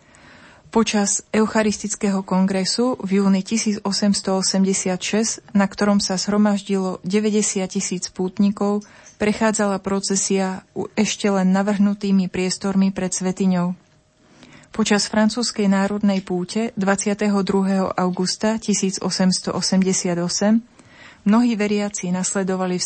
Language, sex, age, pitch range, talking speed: Slovak, female, 30-49, 185-210 Hz, 85 wpm